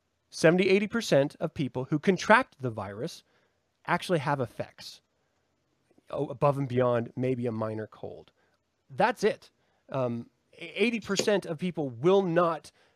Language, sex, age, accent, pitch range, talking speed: English, male, 30-49, American, 140-195 Hz, 110 wpm